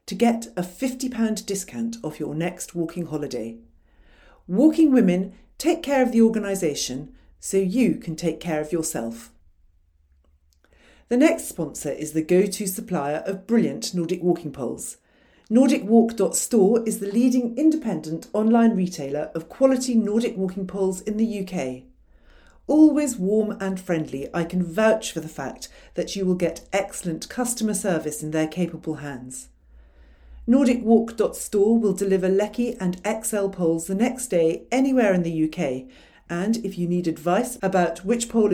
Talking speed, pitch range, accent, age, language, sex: 145 wpm, 165-235 Hz, British, 50-69, English, female